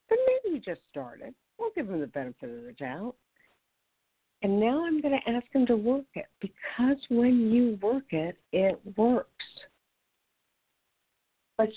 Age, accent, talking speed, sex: 60-79, American, 160 wpm, female